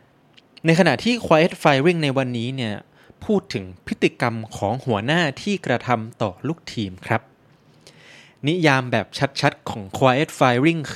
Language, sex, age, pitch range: Thai, male, 20-39, 120-160 Hz